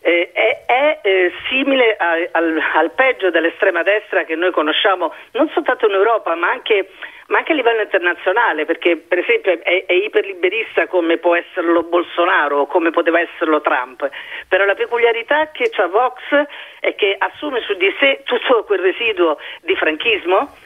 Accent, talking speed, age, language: native, 170 wpm, 40-59, Italian